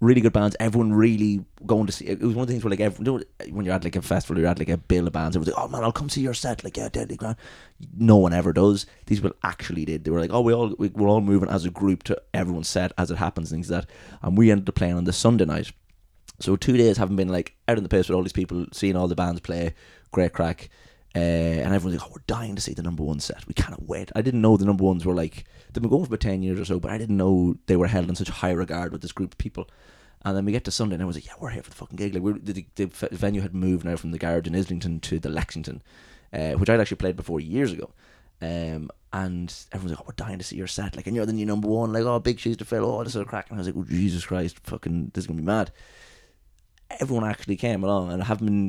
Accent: British